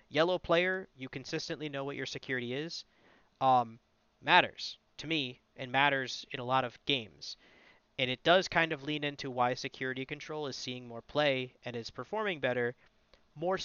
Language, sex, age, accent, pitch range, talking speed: English, male, 30-49, American, 130-160 Hz, 170 wpm